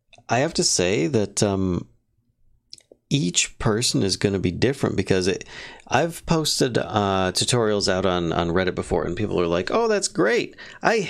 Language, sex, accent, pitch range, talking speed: English, male, American, 95-135 Hz, 175 wpm